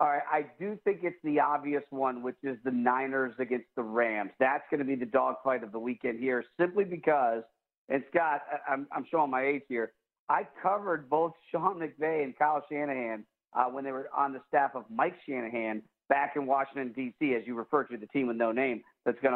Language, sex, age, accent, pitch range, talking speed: English, male, 50-69, American, 135-185 Hz, 215 wpm